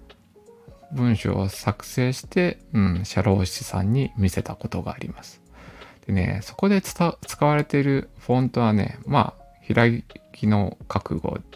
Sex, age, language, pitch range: male, 20-39, Japanese, 100-135 Hz